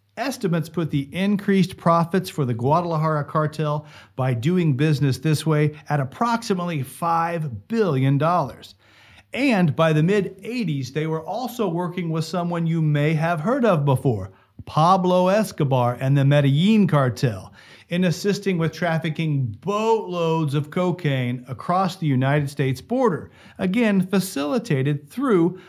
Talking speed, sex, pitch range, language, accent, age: 130 wpm, male, 135-185 Hz, English, American, 40-59